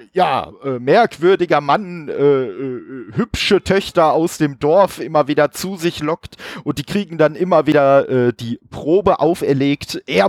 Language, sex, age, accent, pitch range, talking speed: German, male, 40-59, German, 130-170 Hz, 155 wpm